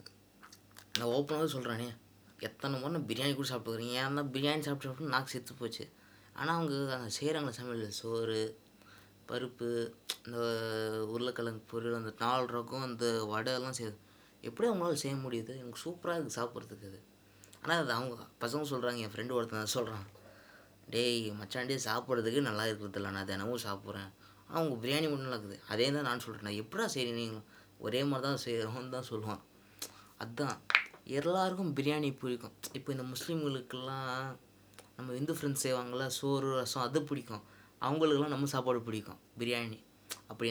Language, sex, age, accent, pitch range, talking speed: Tamil, female, 20-39, native, 110-140 Hz, 140 wpm